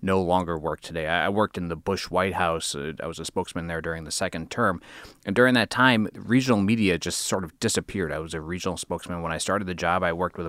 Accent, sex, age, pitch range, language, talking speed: American, male, 30-49, 90-105 Hz, English, 245 wpm